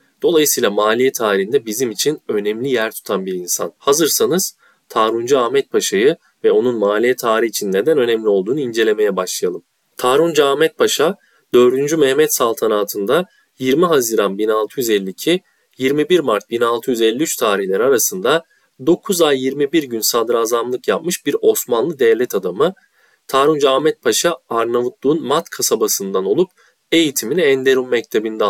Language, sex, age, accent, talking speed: Turkish, male, 30-49, native, 120 wpm